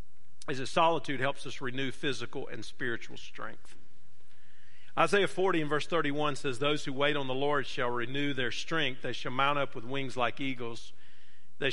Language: English